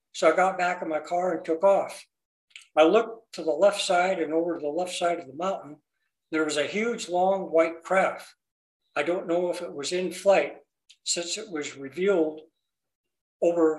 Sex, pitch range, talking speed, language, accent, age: male, 155-190 Hz, 190 wpm, English, American, 60-79